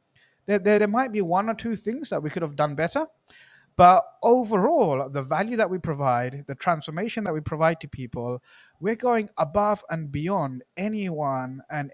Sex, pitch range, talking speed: male, 140-200 Hz, 180 wpm